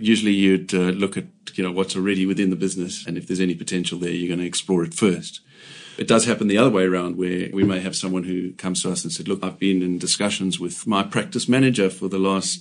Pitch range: 95-115 Hz